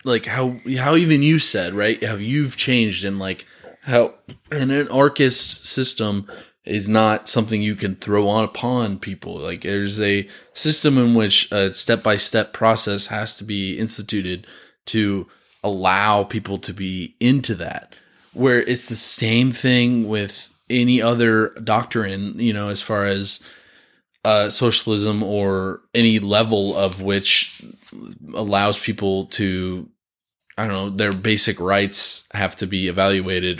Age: 20-39